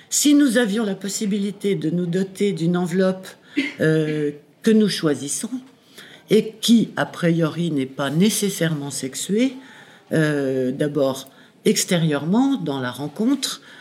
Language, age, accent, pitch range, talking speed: French, 60-79, French, 150-215 Hz, 120 wpm